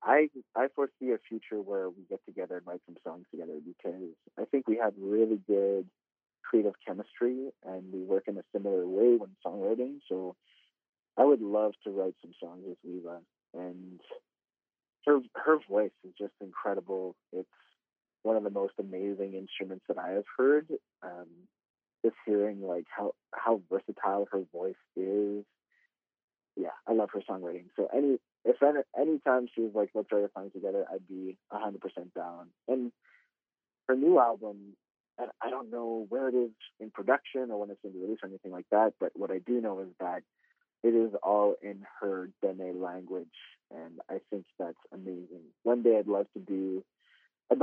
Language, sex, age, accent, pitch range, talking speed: English, male, 30-49, American, 95-120 Hz, 180 wpm